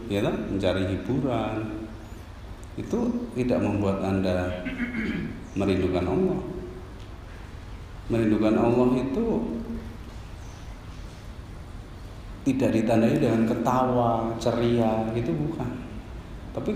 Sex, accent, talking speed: male, native, 70 wpm